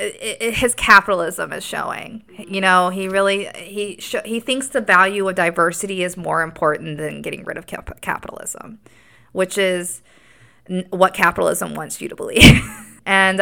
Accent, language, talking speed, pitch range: American, English, 145 wpm, 160-195 Hz